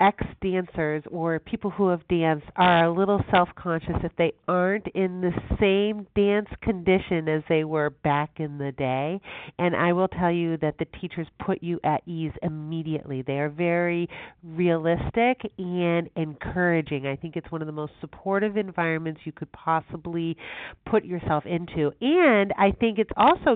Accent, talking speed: American, 165 wpm